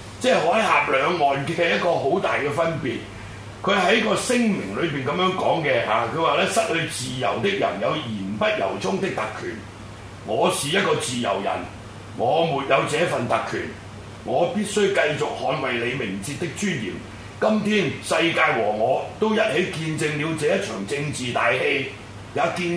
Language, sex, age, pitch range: Chinese, male, 40-59, 110-165 Hz